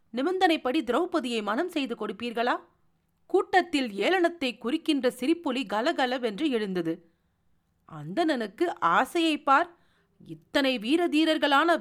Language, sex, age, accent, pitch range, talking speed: Tamil, female, 40-59, native, 230-335 Hz, 75 wpm